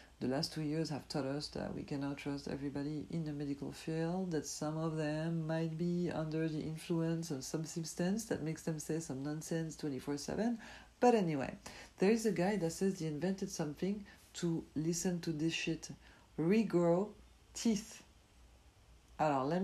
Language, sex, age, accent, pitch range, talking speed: English, female, 50-69, French, 140-170 Hz, 170 wpm